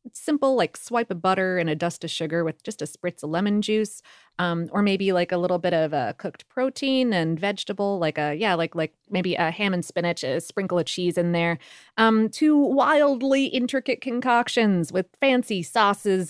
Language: English